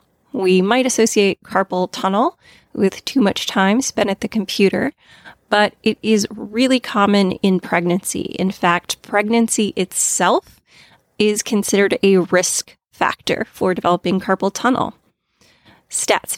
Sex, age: female, 30-49